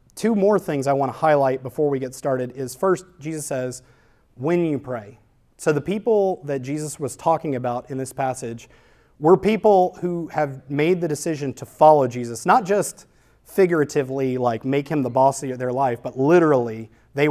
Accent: American